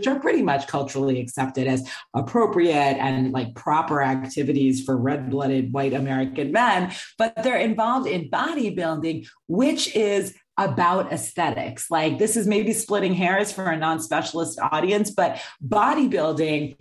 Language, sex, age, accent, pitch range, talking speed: English, female, 40-59, American, 140-200 Hz, 140 wpm